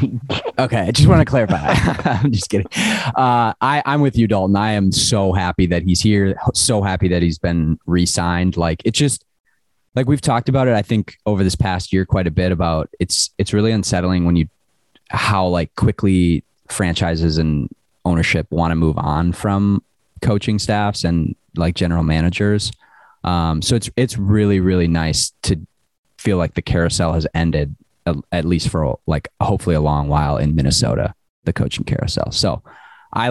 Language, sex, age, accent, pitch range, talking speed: English, male, 30-49, American, 85-110 Hz, 175 wpm